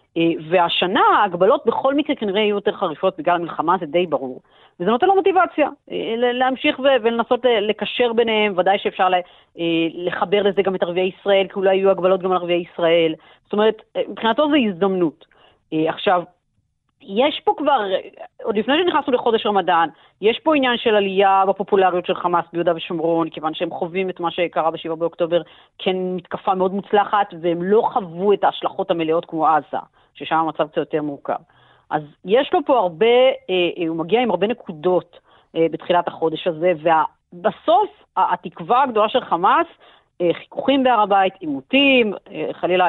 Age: 30-49